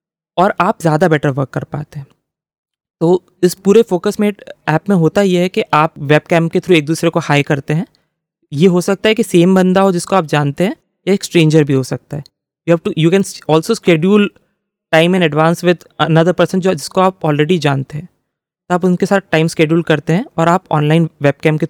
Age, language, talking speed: 20-39, English, 185 wpm